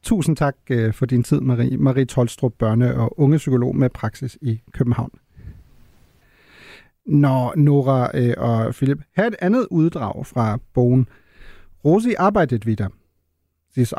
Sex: male